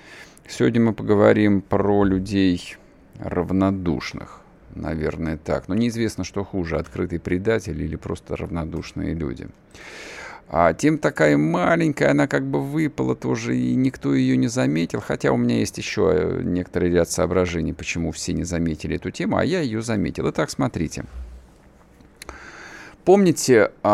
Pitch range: 85-105 Hz